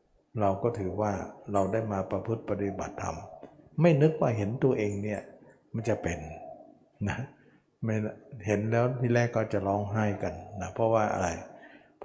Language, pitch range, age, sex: Thai, 100-125 Hz, 60-79, male